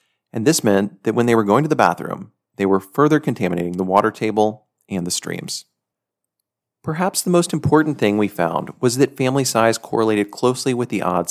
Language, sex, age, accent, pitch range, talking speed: English, male, 40-59, American, 100-140 Hz, 195 wpm